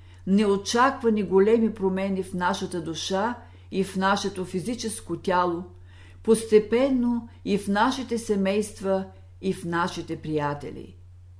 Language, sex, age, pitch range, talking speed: Bulgarian, female, 50-69, 145-215 Hz, 105 wpm